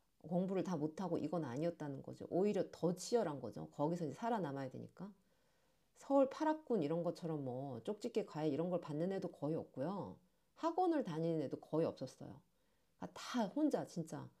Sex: female